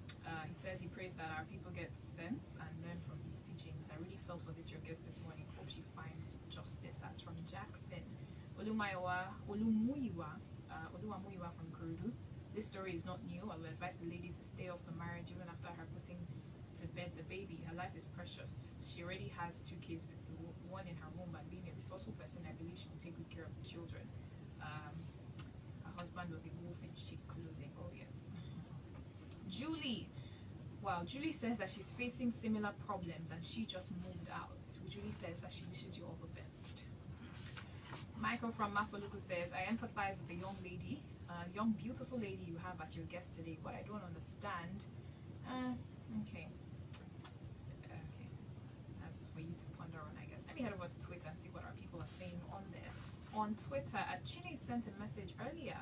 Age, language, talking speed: 20-39, English, 195 wpm